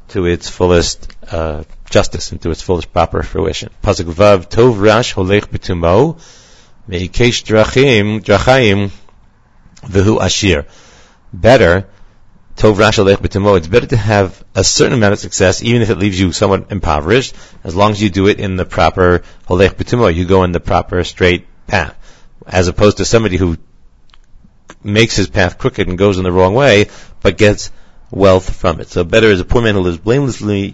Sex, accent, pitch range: male, American, 90-110 Hz